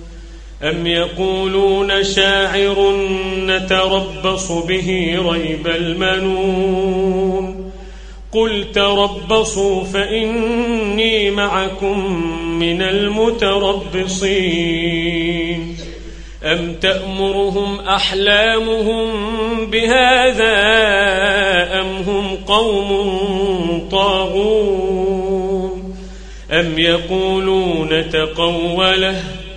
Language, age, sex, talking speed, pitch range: Arabic, 40-59, male, 50 wpm, 185-240 Hz